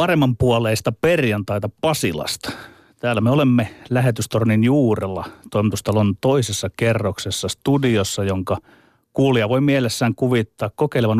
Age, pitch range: 30-49, 100-125 Hz